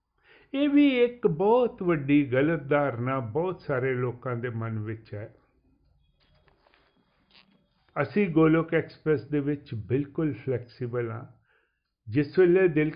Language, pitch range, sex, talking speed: Punjabi, 120-185 Hz, male, 115 wpm